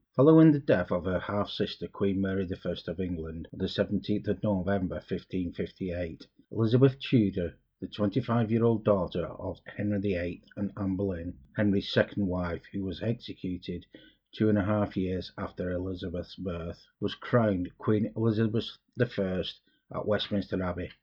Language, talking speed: English, 145 wpm